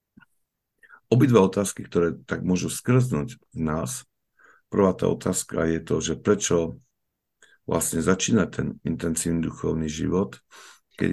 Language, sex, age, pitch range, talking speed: Slovak, male, 50-69, 80-95 Hz, 120 wpm